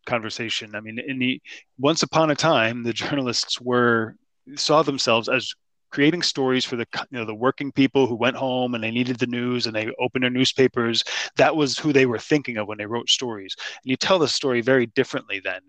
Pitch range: 115-140 Hz